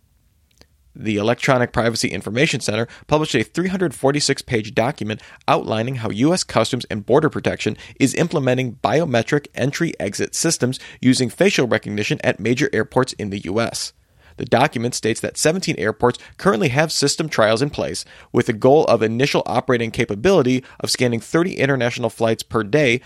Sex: male